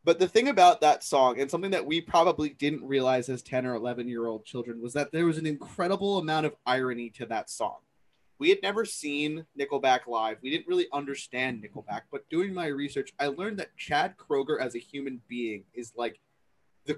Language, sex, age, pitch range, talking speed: English, male, 20-39, 125-155 Hz, 210 wpm